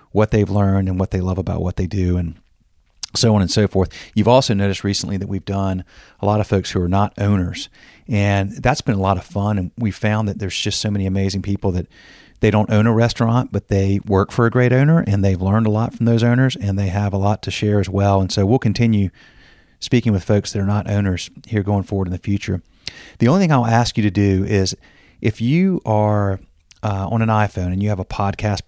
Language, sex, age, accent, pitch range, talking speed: English, male, 40-59, American, 95-110 Hz, 245 wpm